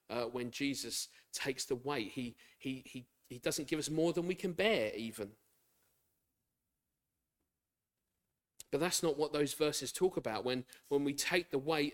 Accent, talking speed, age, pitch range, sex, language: British, 165 wpm, 40-59, 130-170 Hz, male, English